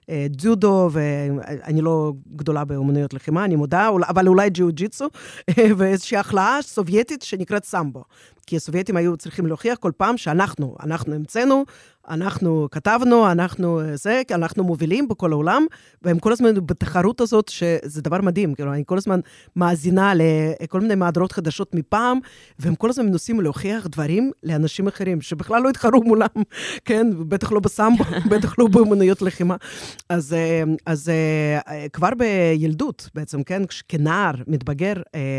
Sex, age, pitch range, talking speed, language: female, 30-49, 155-200 Hz, 130 wpm, Hebrew